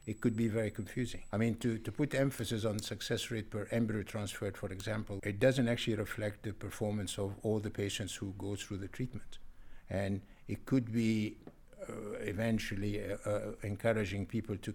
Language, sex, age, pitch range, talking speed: English, male, 60-79, 100-115 Hz, 185 wpm